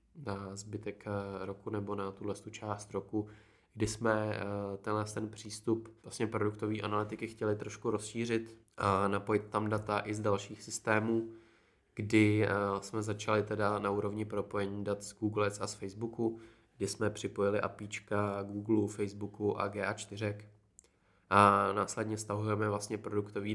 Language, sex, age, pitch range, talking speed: Czech, male, 20-39, 100-110 Hz, 135 wpm